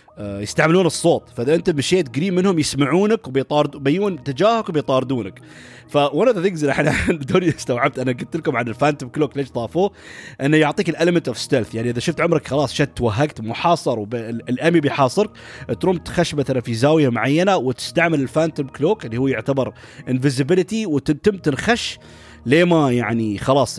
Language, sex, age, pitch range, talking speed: Arabic, male, 30-49, 125-170 Hz, 150 wpm